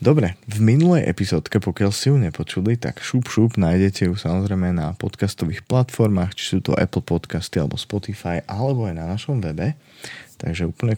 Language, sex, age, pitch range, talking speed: Slovak, male, 20-39, 90-110 Hz, 170 wpm